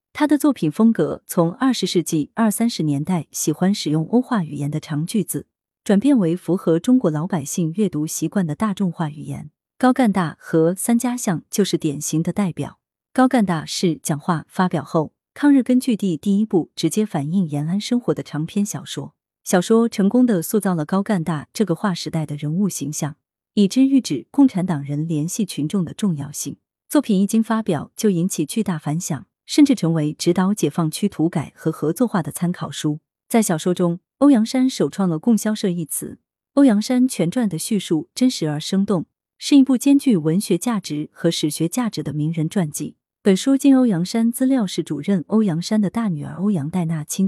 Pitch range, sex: 160-220 Hz, female